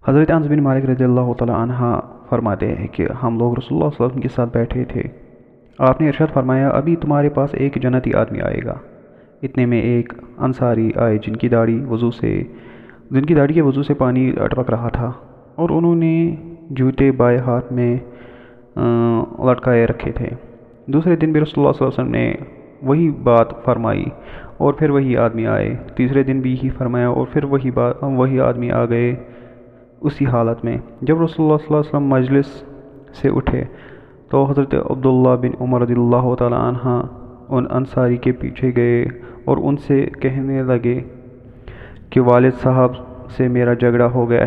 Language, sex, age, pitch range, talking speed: Urdu, male, 30-49, 120-135 Hz, 180 wpm